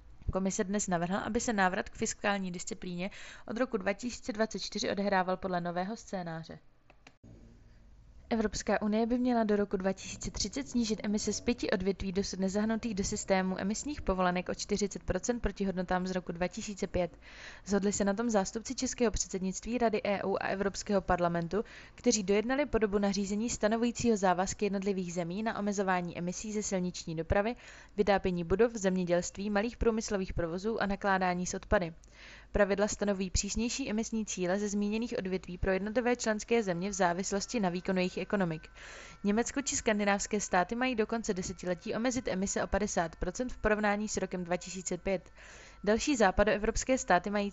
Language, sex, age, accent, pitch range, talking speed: Czech, female, 20-39, native, 185-225 Hz, 145 wpm